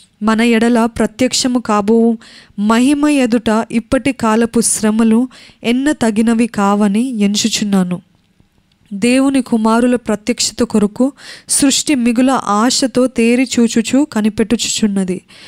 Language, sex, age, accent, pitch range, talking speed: Telugu, female, 20-39, native, 220-255 Hz, 85 wpm